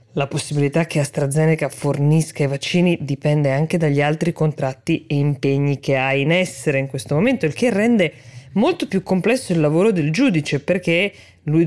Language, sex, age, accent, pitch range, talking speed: Italian, female, 20-39, native, 140-170 Hz, 170 wpm